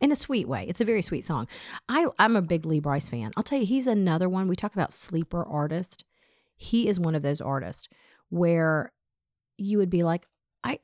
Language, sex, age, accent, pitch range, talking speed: English, female, 40-59, American, 150-190 Hz, 215 wpm